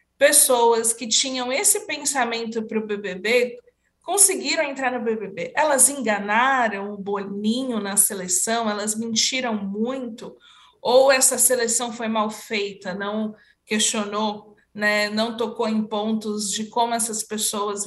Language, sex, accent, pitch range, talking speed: Portuguese, female, Brazilian, 210-255 Hz, 130 wpm